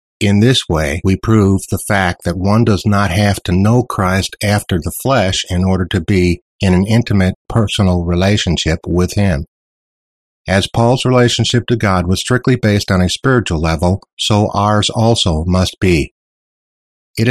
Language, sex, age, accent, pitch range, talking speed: English, male, 60-79, American, 90-110 Hz, 165 wpm